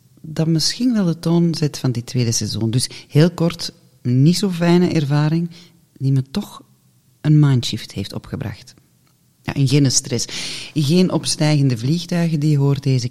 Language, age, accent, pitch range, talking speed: Dutch, 40-59, Dutch, 125-165 Hz, 155 wpm